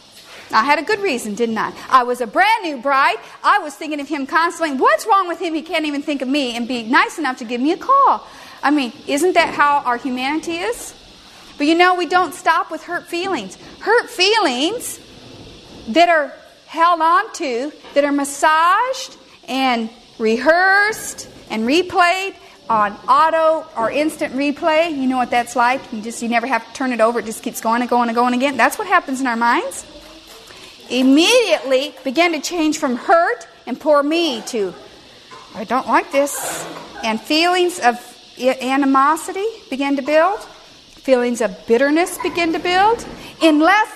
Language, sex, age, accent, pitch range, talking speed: English, female, 40-59, American, 255-345 Hz, 180 wpm